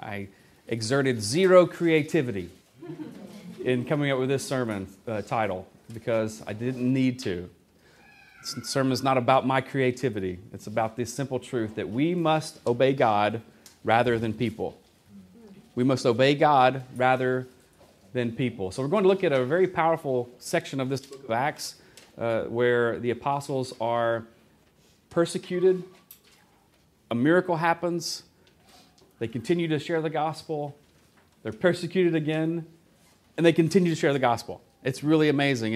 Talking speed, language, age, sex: 145 wpm, English, 30-49, male